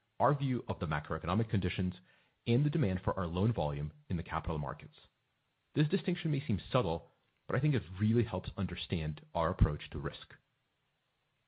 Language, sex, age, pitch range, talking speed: English, male, 40-59, 85-120 Hz, 175 wpm